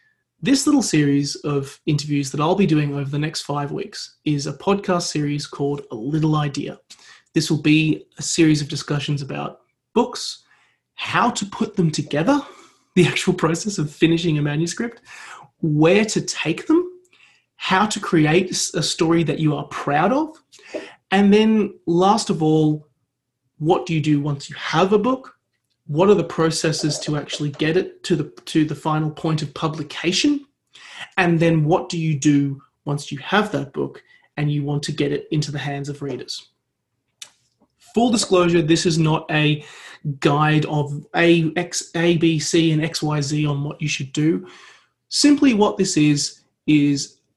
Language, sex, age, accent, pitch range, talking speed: English, male, 30-49, Australian, 150-180 Hz, 170 wpm